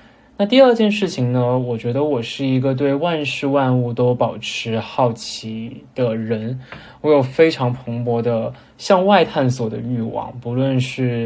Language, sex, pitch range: Chinese, male, 120-145 Hz